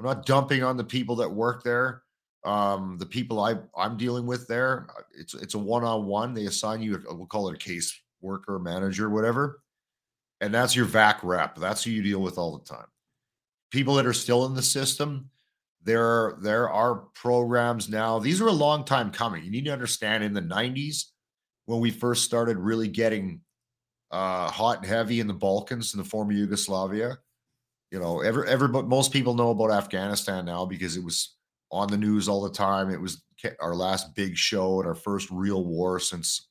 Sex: male